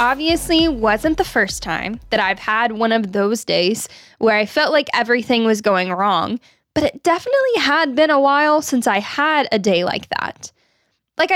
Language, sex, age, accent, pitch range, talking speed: English, female, 10-29, American, 225-300 Hz, 185 wpm